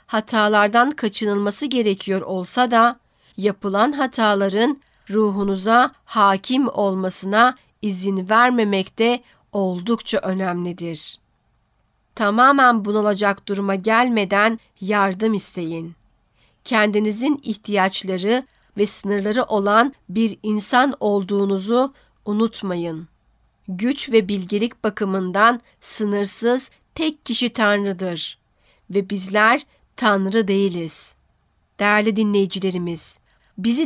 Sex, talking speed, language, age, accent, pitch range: female, 80 wpm, Turkish, 50-69, native, 200-235 Hz